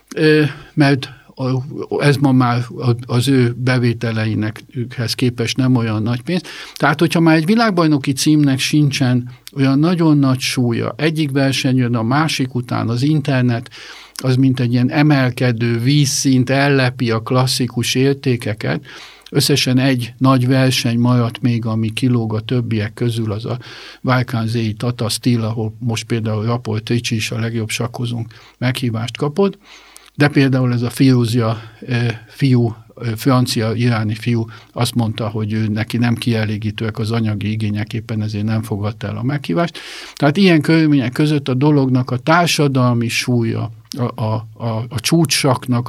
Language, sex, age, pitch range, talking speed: Hungarian, male, 50-69, 115-135 Hz, 145 wpm